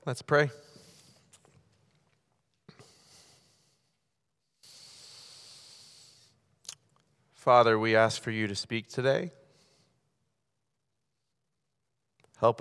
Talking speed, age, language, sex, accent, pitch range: 50 wpm, 30-49, English, male, American, 110-130 Hz